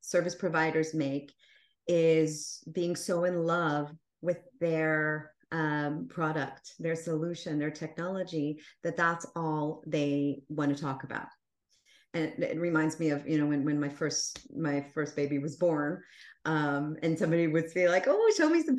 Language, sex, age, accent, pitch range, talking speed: English, female, 30-49, American, 155-200 Hz, 165 wpm